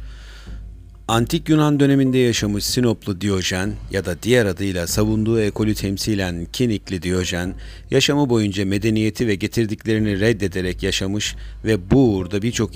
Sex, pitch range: male, 90-110 Hz